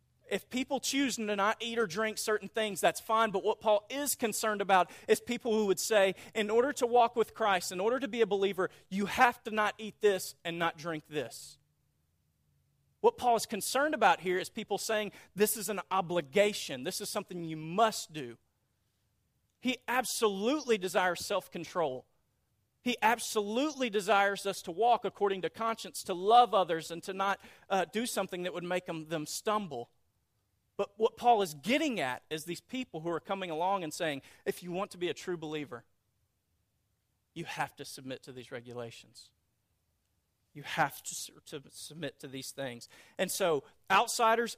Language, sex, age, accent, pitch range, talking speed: English, male, 40-59, American, 140-215 Hz, 180 wpm